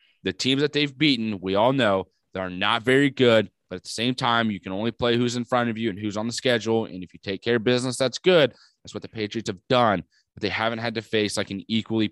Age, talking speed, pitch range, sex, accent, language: 20-39, 270 wpm, 95-115 Hz, male, American, English